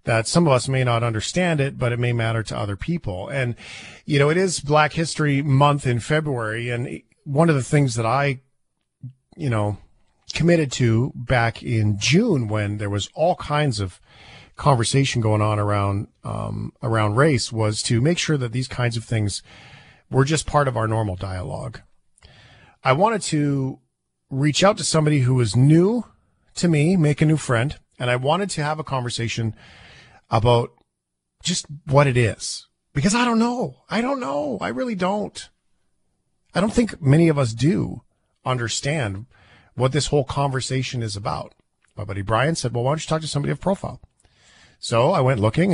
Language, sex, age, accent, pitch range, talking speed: English, male, 40-59, American, 110-150 Hz, 180 wpm